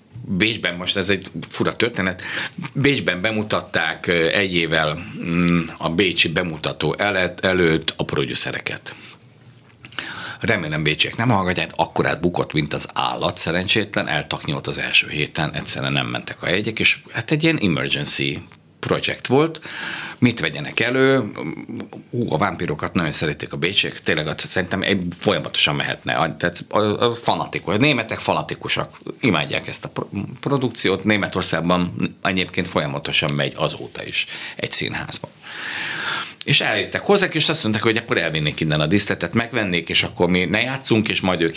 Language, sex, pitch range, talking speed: Hungarian, male, 80-110 Hz, 145 wpm